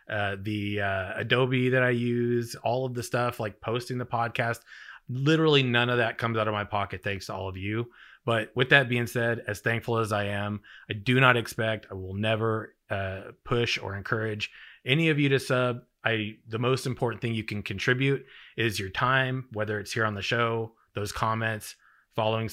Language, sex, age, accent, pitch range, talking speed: English, male, 30-49, American, 105-120 Hz, 200 wpm